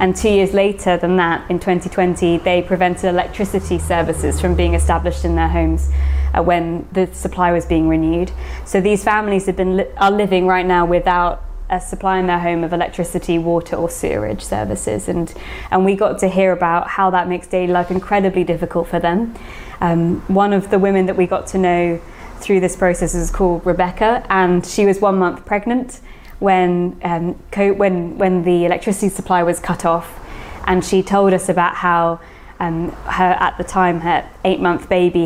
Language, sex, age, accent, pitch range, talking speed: English, female, 20-39, British, 170-190 Hz, 185 wpm